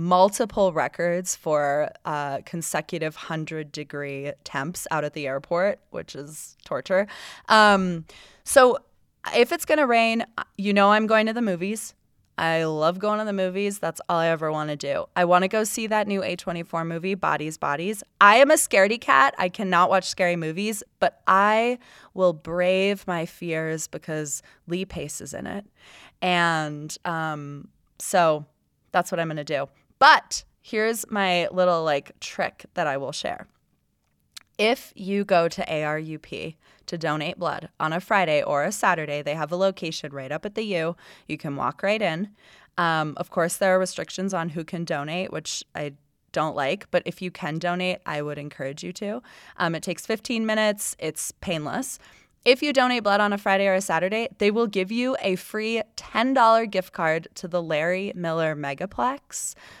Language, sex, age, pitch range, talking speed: English, female, 20-39, 155-205 Hz, 175 wpm